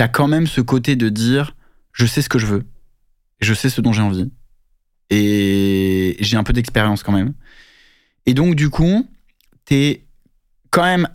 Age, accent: 20-39, French